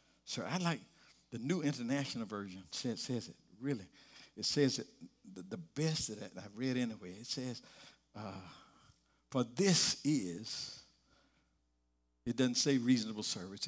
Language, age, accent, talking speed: English, 60-79, American, 140 wpm